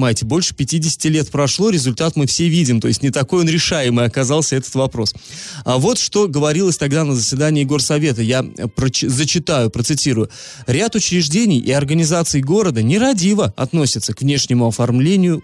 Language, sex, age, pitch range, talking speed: Russian, male, 20-39, 120-160 Hz, 150 wpm